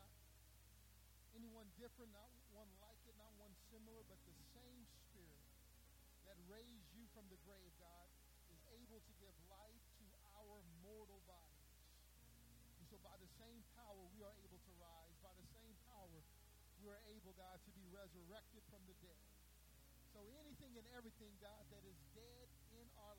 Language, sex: English, male